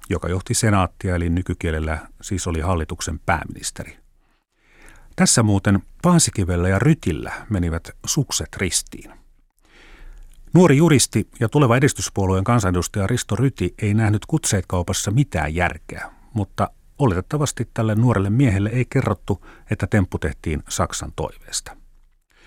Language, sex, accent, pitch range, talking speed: Finnish, male, native, 85-120 Hz, 115 wpm